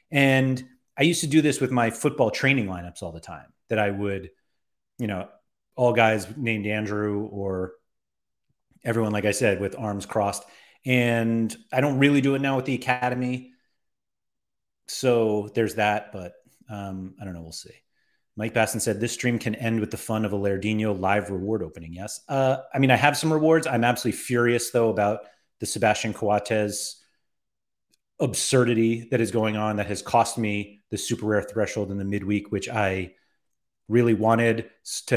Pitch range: 100-125 Hz